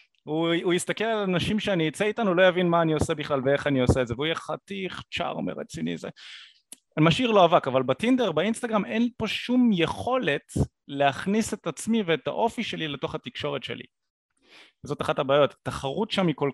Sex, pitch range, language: male, 150-215 Hz, Hebrew